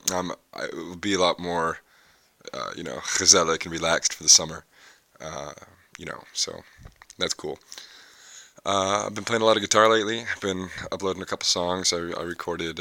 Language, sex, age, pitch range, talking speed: English, male, 20-39, 80-95 Hz, 195 wpm